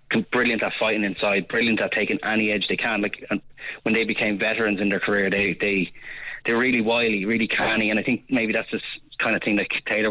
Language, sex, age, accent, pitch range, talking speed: English, male, 20-39, Irish, 100-110 Hz, 225 wpm